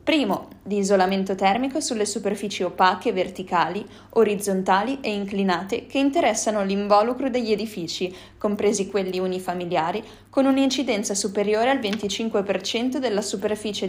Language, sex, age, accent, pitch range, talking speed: Italian, female, 20-39, native, 190-235 Hz, 110 wpm